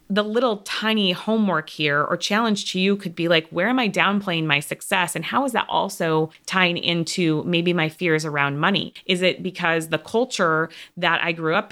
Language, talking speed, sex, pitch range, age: English, 200 wpm, female, 155-185 Hz, 20-39